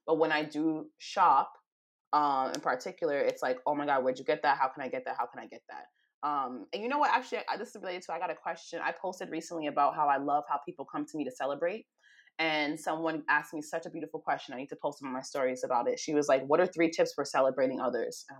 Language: English